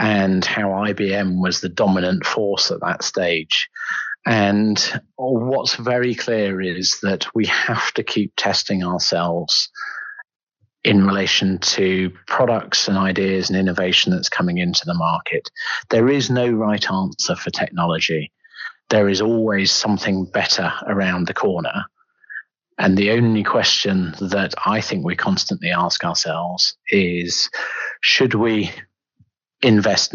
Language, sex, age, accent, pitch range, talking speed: English, male, 40-59, British, 95-115 Hz, 130 wpm